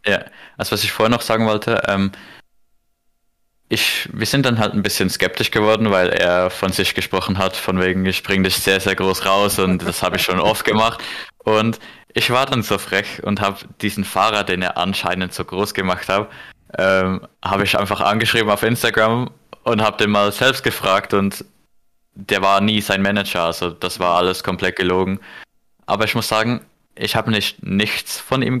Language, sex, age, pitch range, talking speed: German, male, 20-39, 95-110 Hz, 195 wpm